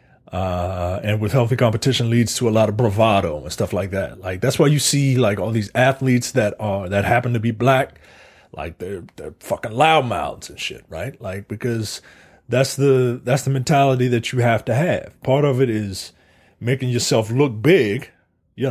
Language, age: English, 30-49